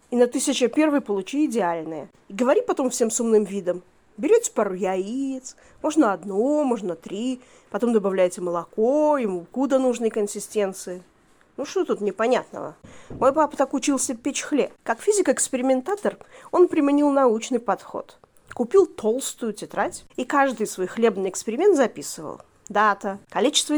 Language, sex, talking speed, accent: Russian, female, 135 wpm, native